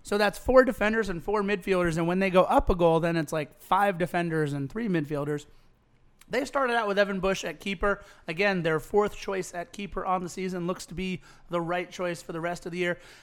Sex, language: male, English